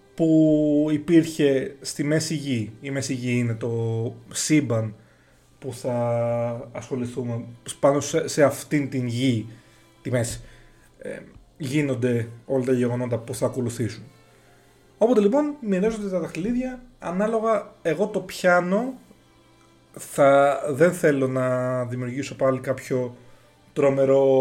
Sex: male